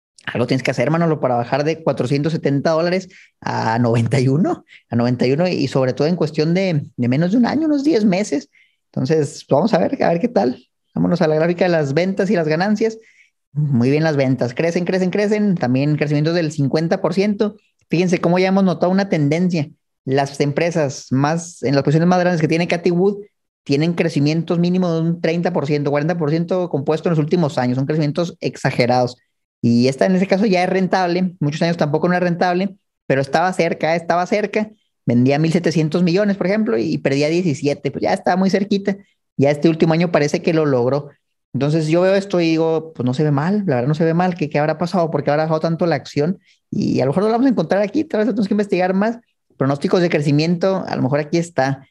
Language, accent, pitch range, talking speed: Spanish, Mexican, 145-185 Hz, 210 wpm